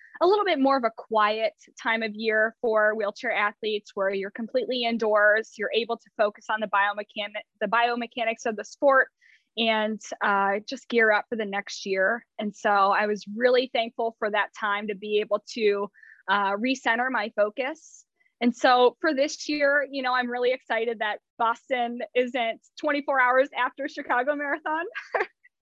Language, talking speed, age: English, 170 wpm, 10-29